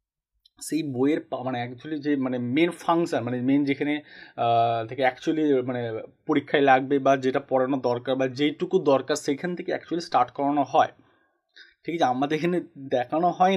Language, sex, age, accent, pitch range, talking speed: Bengali, male, 30-49, native, 130-165 Hz, 155 wpm